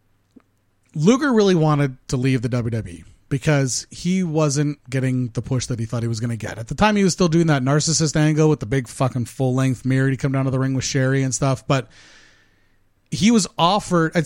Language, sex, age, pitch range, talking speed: English, male, 30-49, 125-155 Hz, 215 wpm